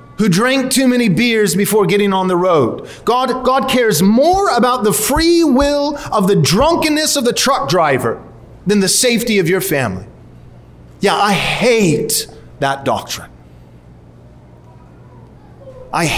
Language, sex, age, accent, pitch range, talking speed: English, male, 30-49, American, 180-255 Hz, 135 wpm